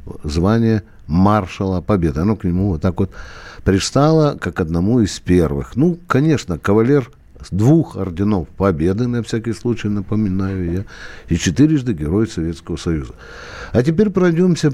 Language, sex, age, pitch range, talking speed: Russian, male, 60-79, 100-150 Hz, 140 wpm